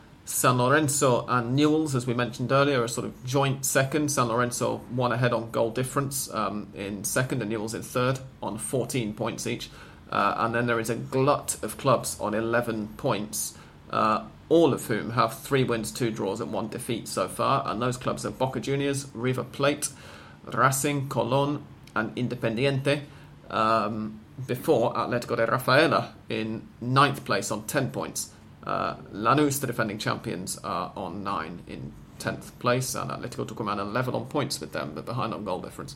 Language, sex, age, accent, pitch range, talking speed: English, male, 30-49, British, 115-135 Hz, 175 wpm